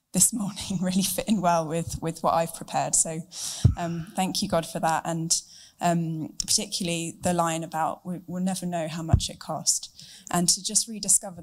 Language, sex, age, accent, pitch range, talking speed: English, female, 20-39, British, 160-185 Hz, 190 wpm